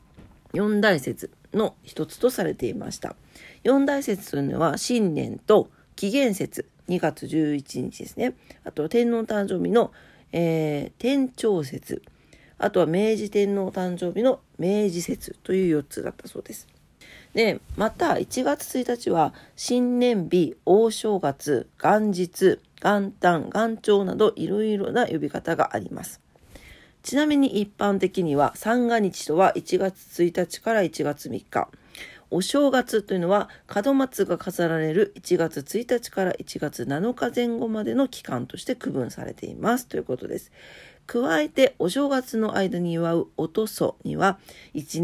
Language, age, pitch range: Japanese, 40-59, 175-235 Hz